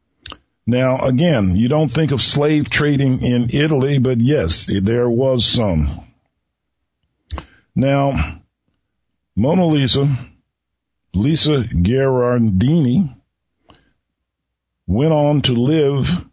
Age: 50-69